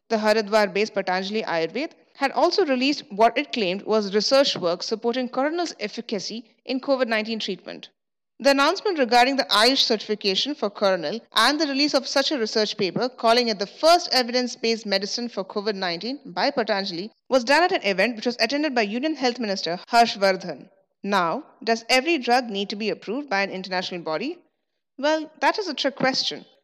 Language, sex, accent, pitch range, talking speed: English, female, Indian, 200-280 Hz, 175 wpm